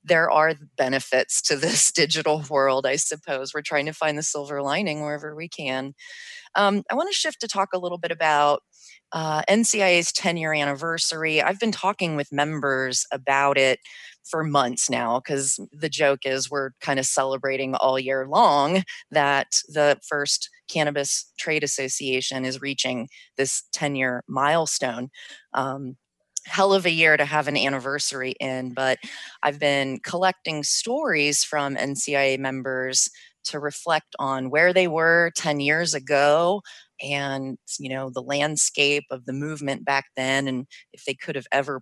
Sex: female